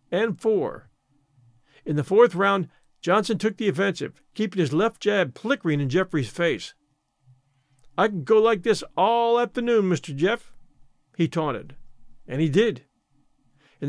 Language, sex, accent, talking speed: English, male, American, 145 wpm